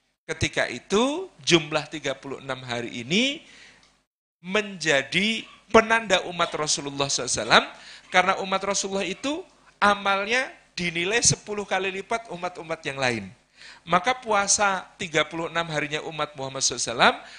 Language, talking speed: Indonesian, 105 wpm